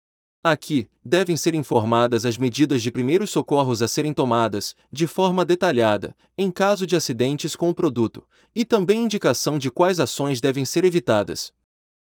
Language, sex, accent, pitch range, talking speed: Portuguese, male, Brazilian, 120-180 Hz, 155 wpm